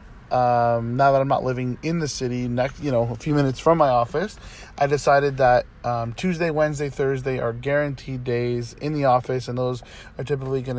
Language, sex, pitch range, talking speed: English, male, 120-145 Hz, 200 wpm